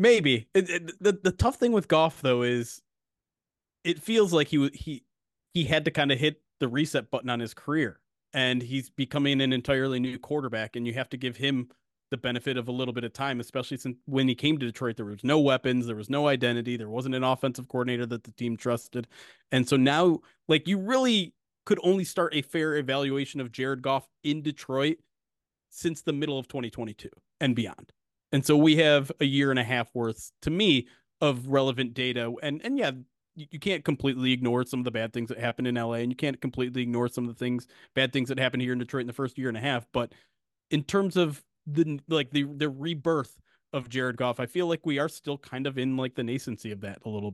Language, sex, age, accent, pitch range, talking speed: English, male, 30-49, American, 125-150 Hz, 225 wpm